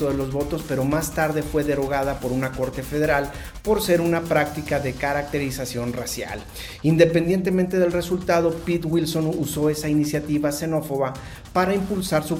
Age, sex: 40-59, male